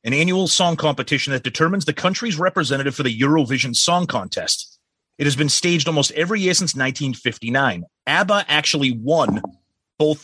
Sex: male